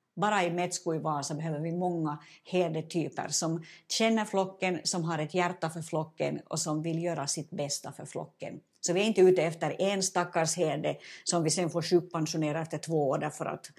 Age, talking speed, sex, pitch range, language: 60-79, 195 wpm, female, 155-185 Hz, Swedish